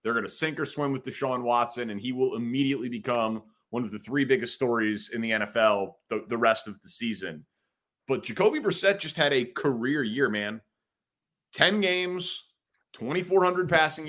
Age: 30-49